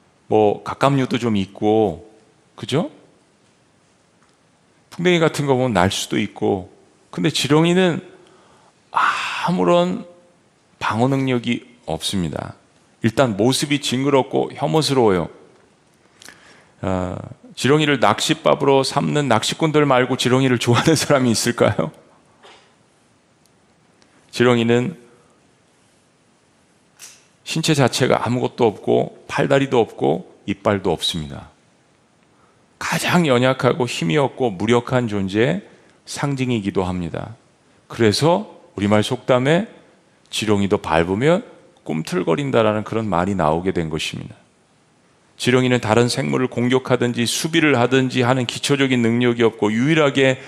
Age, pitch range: 40-59, 105-140 Hz